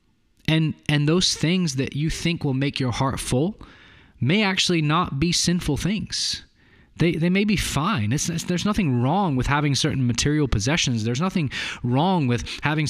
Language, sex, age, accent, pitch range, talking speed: English, male, 20-39, American, 115-150 Hz, 175 wpm